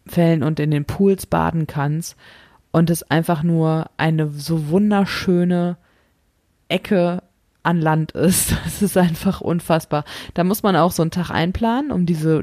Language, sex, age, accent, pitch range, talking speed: German, female, 20-39, German, 165-185 Hz, 155 wpm